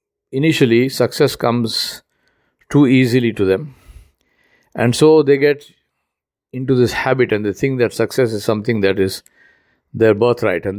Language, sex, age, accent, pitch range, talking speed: English, male, 50-69, Indian, 105-140 Hz, 145 wpm